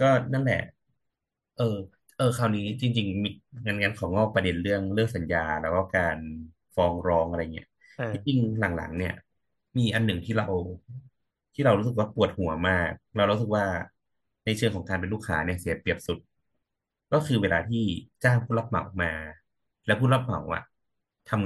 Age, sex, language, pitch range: 30-49, male, Thai, 85-115 Hz